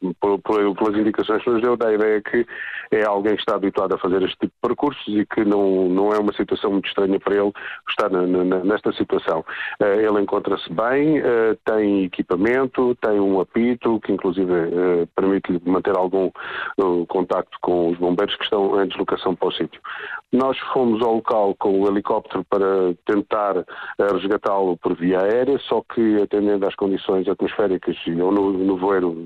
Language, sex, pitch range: Portuguese, male, 95-115 Hz